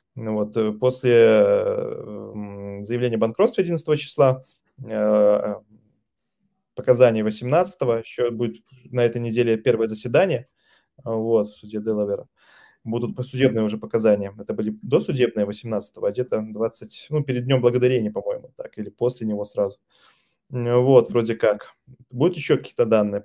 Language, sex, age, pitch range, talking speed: Russian, male, 20-39, 110-135 Hz, 125 wpm